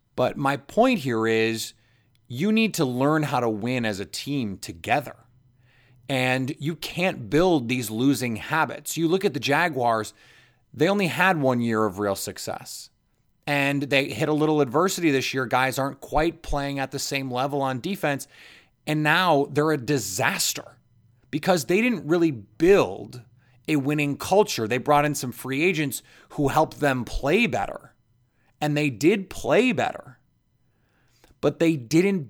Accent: American